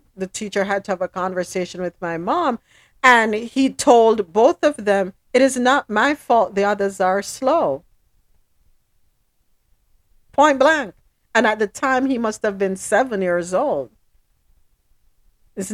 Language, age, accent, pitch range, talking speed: English, 50-69, American, 175-235 Hz, 150 wpm